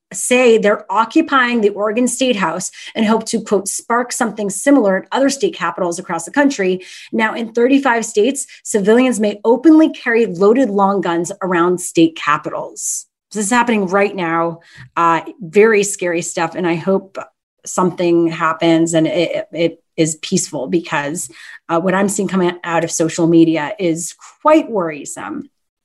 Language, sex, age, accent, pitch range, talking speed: English, female, 30-49, American, 180-270 Hz, 155 wpm